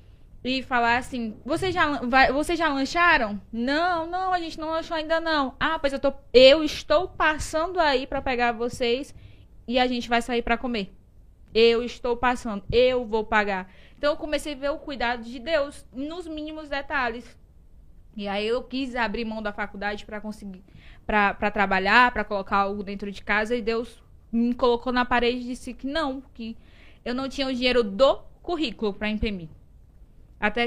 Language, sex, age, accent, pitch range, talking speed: Portuguese, female, 10-29, Brazilian, 220-270 Hz, 180 wpm